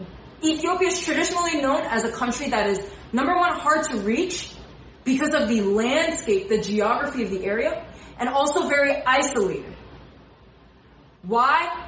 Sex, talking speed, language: female, 140 wpm, English